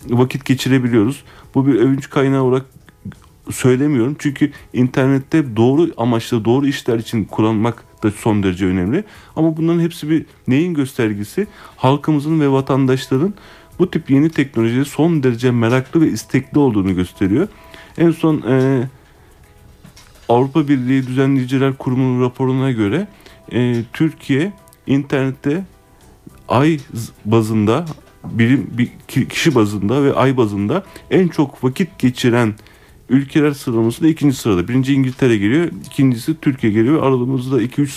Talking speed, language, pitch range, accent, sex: 120 wpm, Turkish, 110-140 Hz, native, male